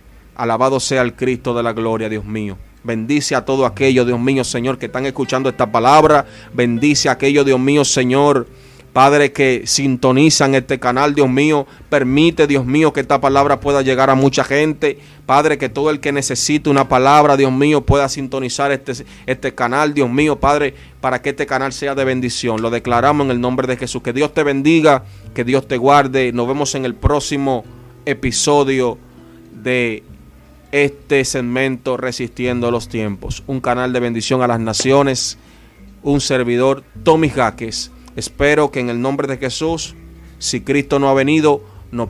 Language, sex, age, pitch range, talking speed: Spanish, male, 30-49, 120-140 Hz, 170 wpm